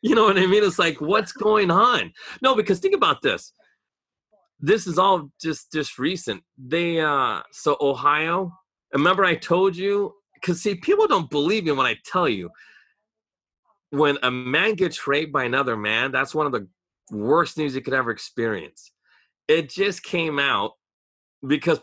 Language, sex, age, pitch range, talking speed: English, male, 30-49, 130-180 Hz, 170 wpm